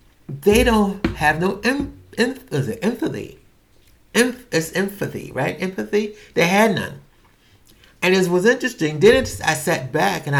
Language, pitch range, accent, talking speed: English, 130-175 Hz, American, 125 wpm